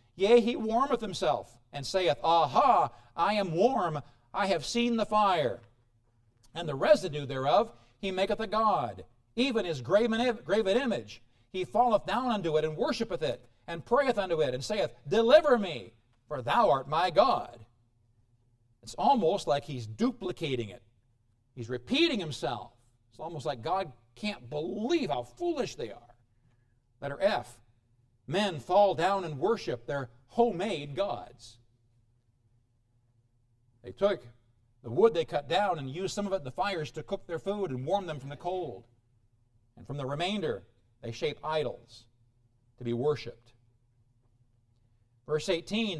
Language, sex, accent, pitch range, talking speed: English, male, American, 120-180 Hz, 150 wpm